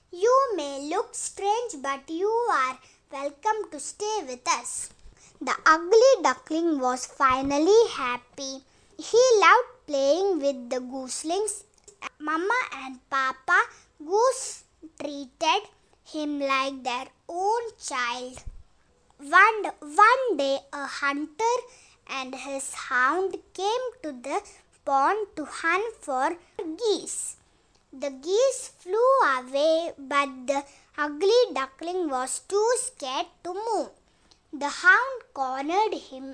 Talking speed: 110 wpm